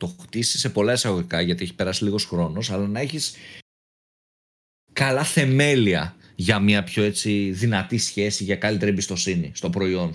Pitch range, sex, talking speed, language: 105-145 Hz, male, 155 wpm, Greek